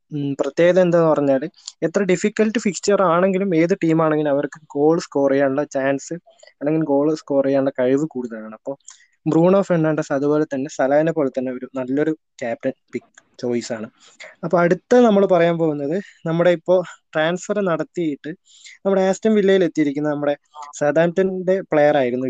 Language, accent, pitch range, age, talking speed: Malayalam, native, 135-170 Hz, 20-39, 135 wpm